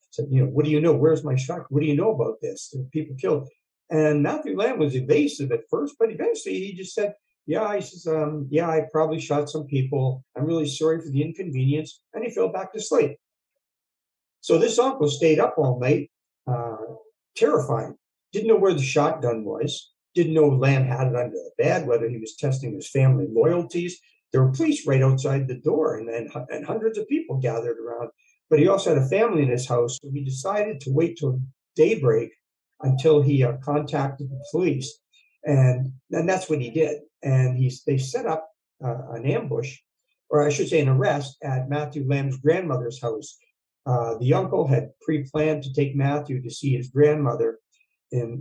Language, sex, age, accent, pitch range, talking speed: English, male, 50-69, American, 130-160 Hz, 195 wpm